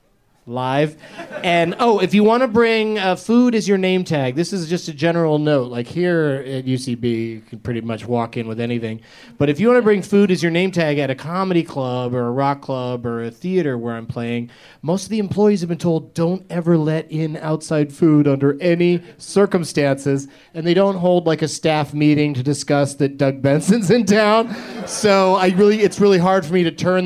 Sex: male